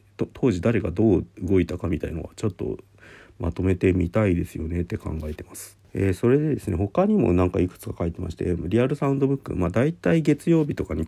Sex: male